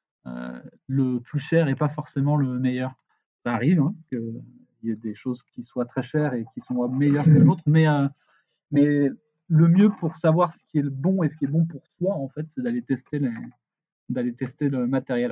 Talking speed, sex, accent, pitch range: 215 wpm, male, French, 125-150 Hz